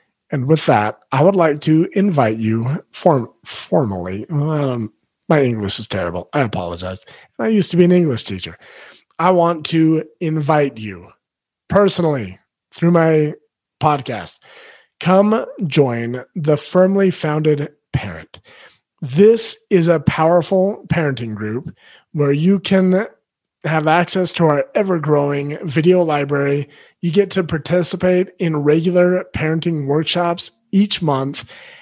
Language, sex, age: English, male, 30-49